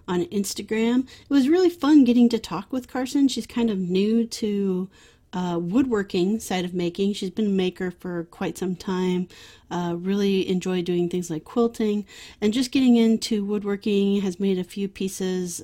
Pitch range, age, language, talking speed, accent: 180-220 Hz, 30-49, English, 175 wpm, American